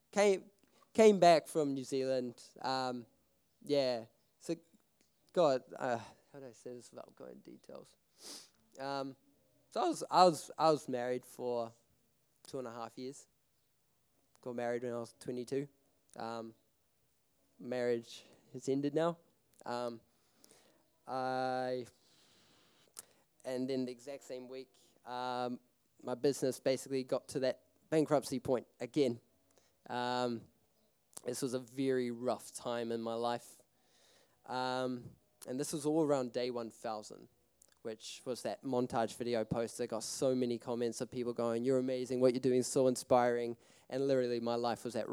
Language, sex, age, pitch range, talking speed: English, male, 10-29, 120-140 Hz, 150 wpm